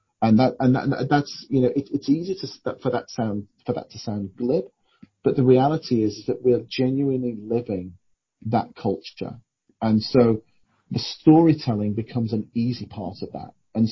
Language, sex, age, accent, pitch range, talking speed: English, male, 40-59, British, 110-135 Hz, 185 wpm